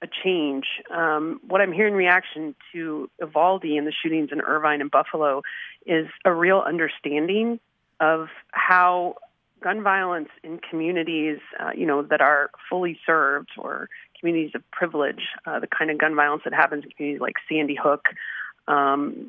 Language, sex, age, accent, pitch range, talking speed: English, female, 30-49, American, 150-190 Hz, 160 wpm